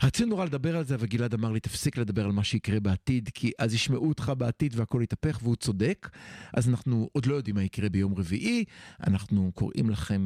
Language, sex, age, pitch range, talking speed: Hebrew, male, 50-69, 115-160 Hz, 210 wpm